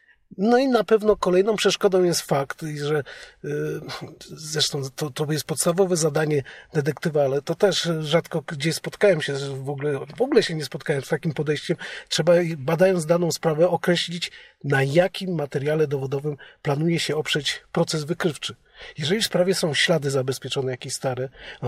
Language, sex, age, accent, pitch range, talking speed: Polish, male, 40-59, native, 150-190 Hz, 165 wpm